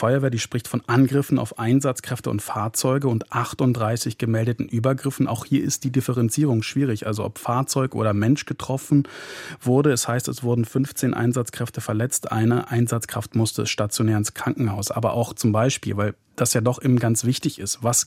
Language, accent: German, German